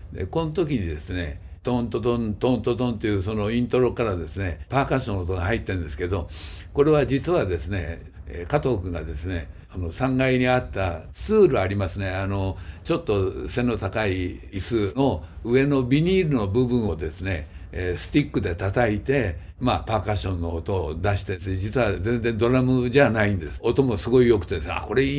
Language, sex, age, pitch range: Japanese, male, 60-79, 90-125 Hz